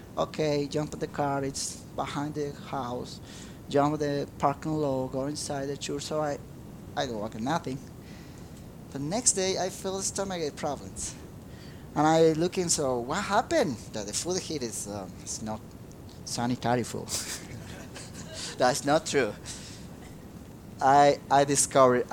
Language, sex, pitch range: English, male, 115-155 Hz